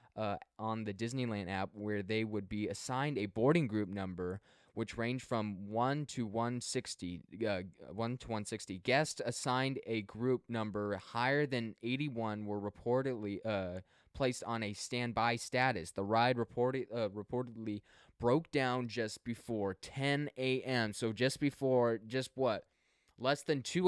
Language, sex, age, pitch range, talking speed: English, male, 20-39, 110-130 Hz, 150 wpm